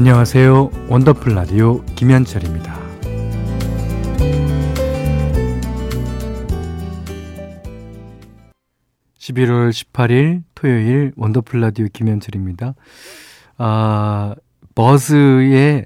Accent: native